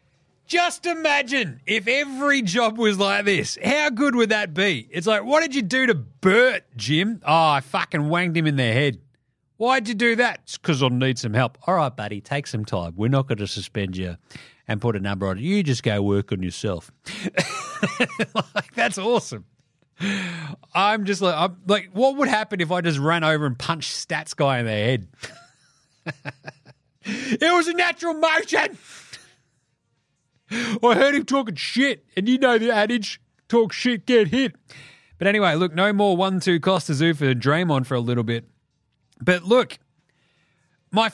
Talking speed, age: 180 wpm, 40-59